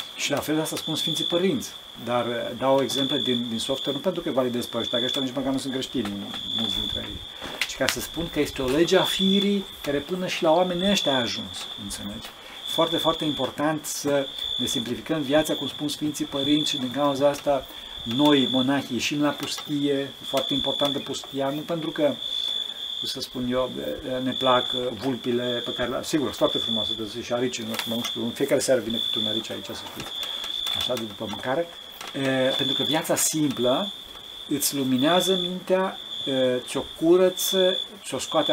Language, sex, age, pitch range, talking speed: Romanian, male, 50-69, 125-155 Hz, 185 wpm